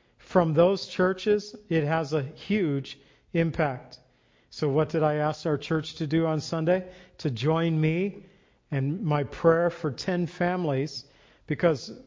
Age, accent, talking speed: 50-69, American, 145 wpm